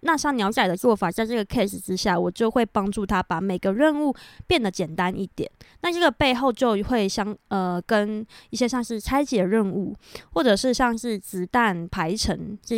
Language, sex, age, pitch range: Chinese, female, 20-39, 195-245 Hz